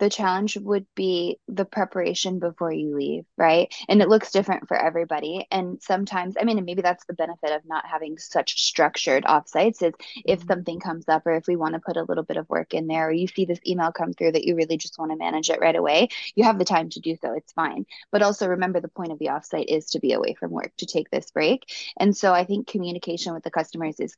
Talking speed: 255 wpm